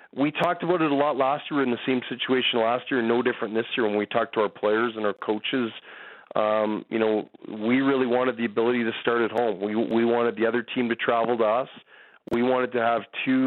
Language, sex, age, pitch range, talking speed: English, male, 40-59, 110-125 Hz, 240 wpm